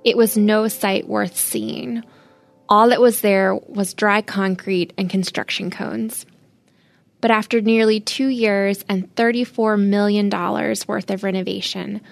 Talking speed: 140 wpm